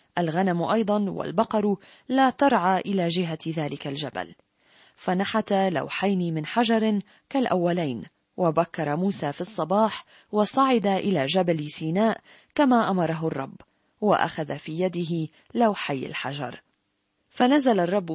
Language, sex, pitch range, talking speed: Arabic, female, 170-210 Hz, 105 wpm